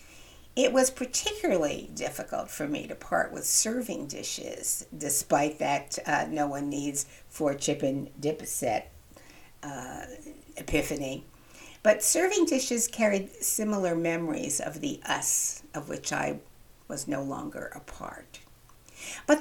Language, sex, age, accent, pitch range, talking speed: English, female, 60-79, American, 160-255 Hz, 115 wpm